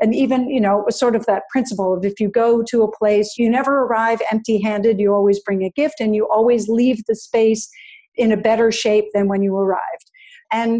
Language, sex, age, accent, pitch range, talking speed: English, female, 50-69, American, 210-240 Hz, 215 wpm